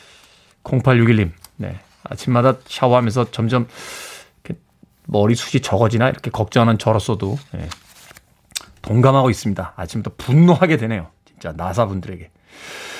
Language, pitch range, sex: Korean, 115-180 Hz, male